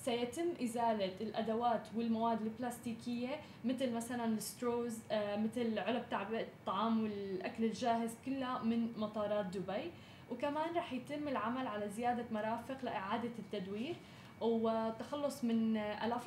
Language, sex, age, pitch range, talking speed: Arabic, female, 10-29, 220-250 Hz, 110 wpm